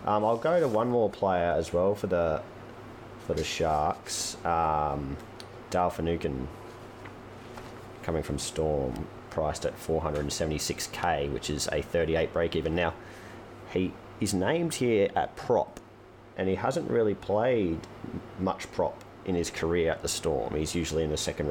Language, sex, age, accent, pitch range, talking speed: English, male, 30-49, Australian, 80-115 Hz, 150 wpm